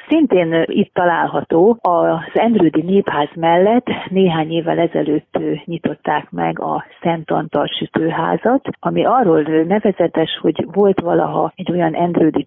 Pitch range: 160-195 Hz